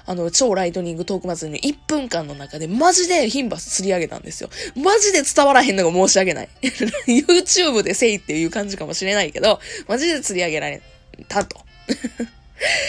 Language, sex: Japanese, female